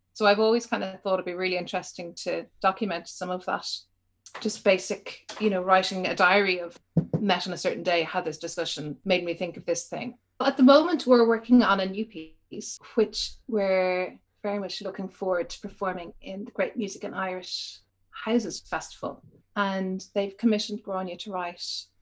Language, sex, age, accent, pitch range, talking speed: English, female, 30-49, Irish, 175-210 Hz, 185 wpm